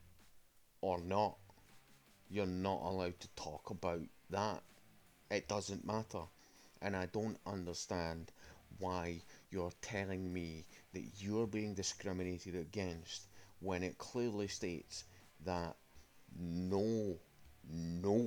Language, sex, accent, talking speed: English, male, British, 105 wpm